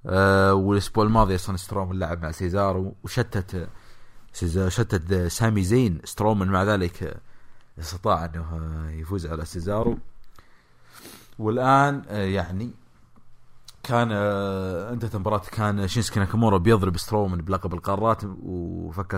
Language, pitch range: English, 90-110 Hz